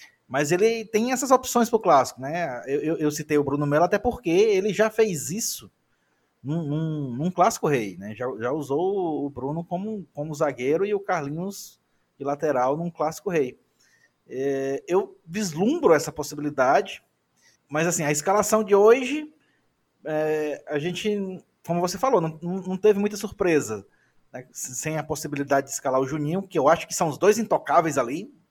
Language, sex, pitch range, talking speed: Portuguese, male, 145-205 Hz, 175 wpm